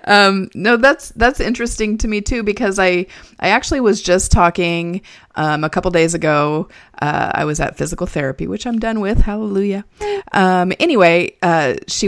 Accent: American